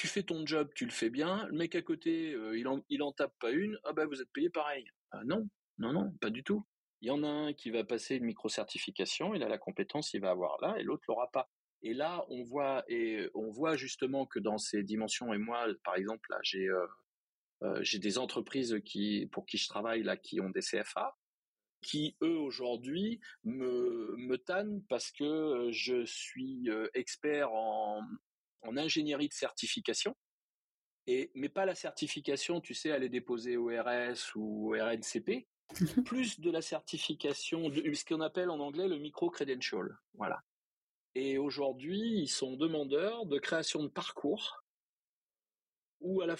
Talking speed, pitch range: 195 wpm, 120-185 Hz